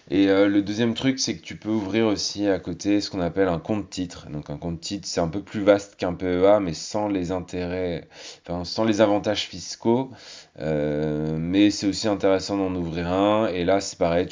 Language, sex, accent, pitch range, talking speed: French, male, French, 90-110 Hz, 215 wpm